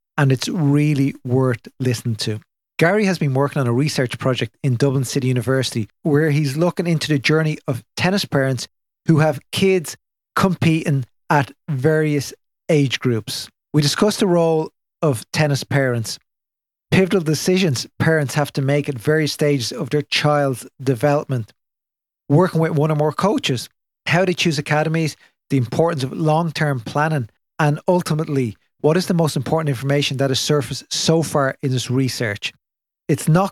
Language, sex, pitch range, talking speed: English, male, 135-160 Hz, 160 wpm